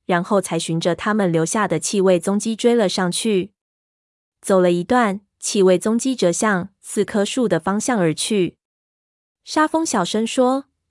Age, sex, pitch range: 20-39, female, 175-220 Hz